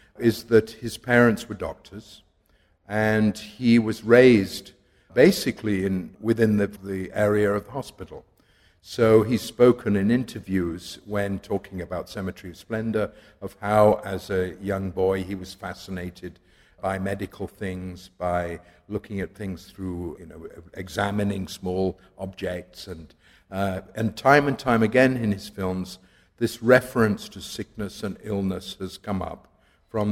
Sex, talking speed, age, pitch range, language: male, 145 wpm, 50-69, 95-110 Hz, English